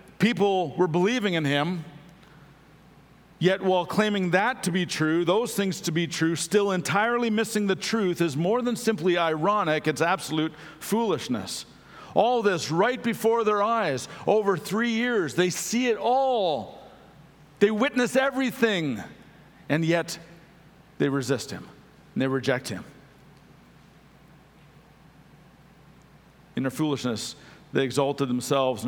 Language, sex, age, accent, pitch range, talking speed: English, male, 50-69, American, 130-180 Hz, 130 wpm